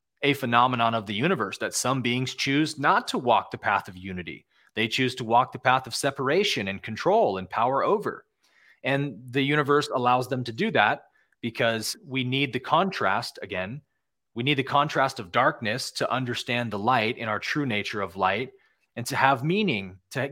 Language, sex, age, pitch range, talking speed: English, male, 30-49, 110-140 Hz, 190 wpm